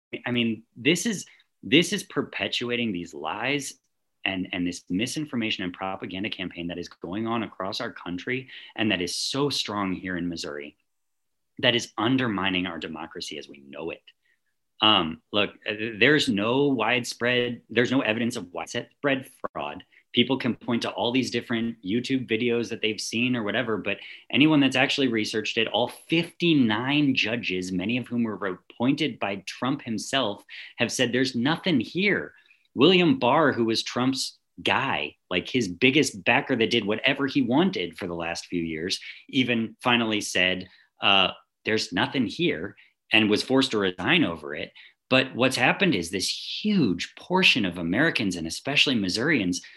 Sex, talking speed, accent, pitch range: male, 160 wpm, American, 100-130 Hz